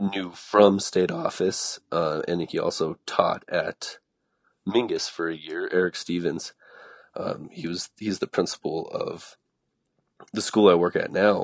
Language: English